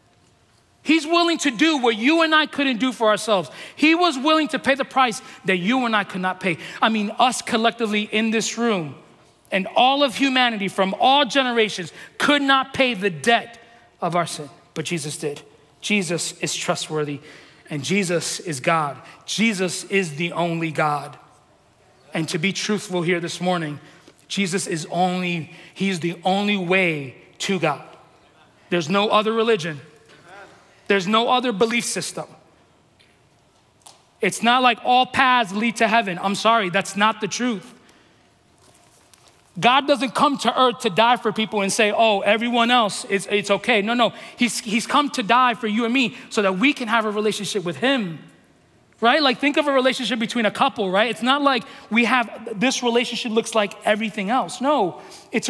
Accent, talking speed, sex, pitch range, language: American, 175 wpm, male, 180-245 Hz, English